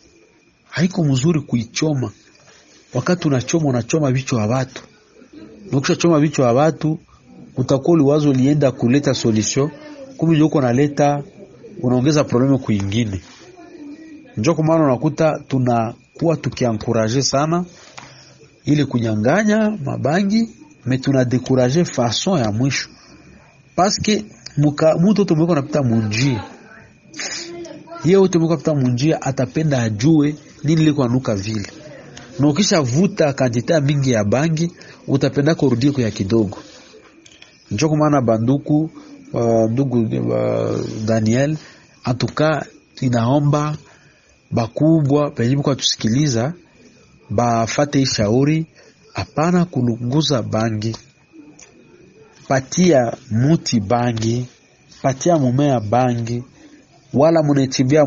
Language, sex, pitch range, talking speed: Swahili, male, 120-160 Hz, 85 wpm